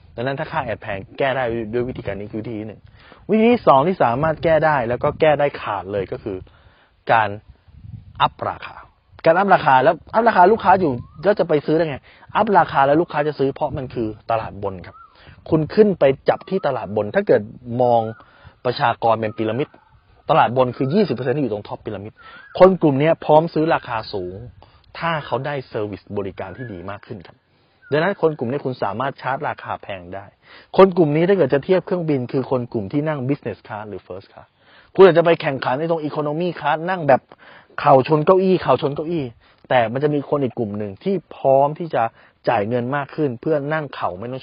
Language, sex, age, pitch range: Thai, male, 20-39, 110-155 Hz